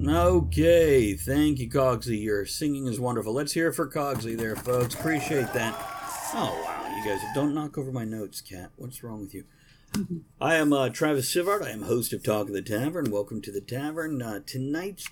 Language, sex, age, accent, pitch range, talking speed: English, male, 50-69, American, 115-155 Hz, 200 wpm